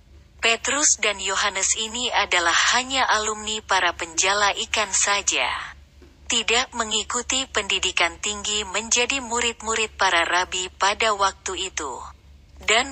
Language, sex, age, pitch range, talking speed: Indonesian, female, 30-49, 180-230 Hz, 105 wpm